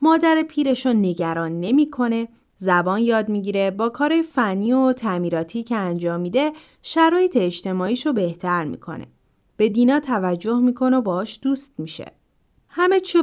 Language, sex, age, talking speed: Persian, female, 30-49, 135 wpm